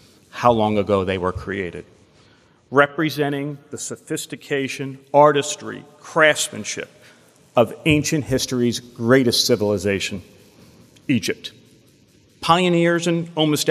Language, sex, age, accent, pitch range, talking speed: English, male, 40-59, American, 115-160 Hz, 90 wpm